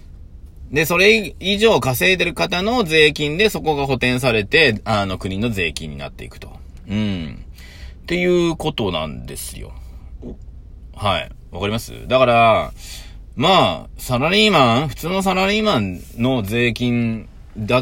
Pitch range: 80-125 Hz